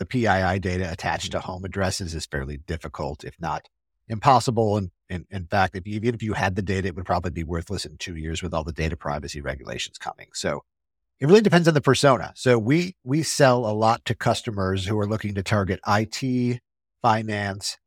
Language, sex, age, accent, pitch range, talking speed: English, male, 50-69, American, 90-115 Hz, 205 wpm